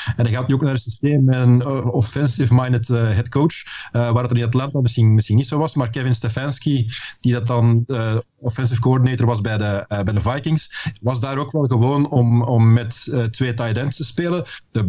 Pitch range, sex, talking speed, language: 110-135 Hz, male, 220 wpm, Dutch